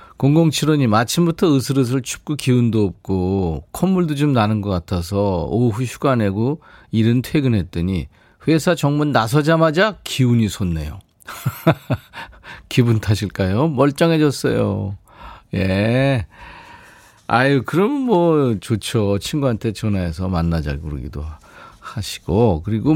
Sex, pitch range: male, 95-140 Hz